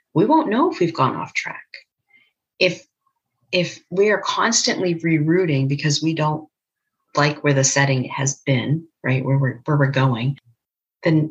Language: English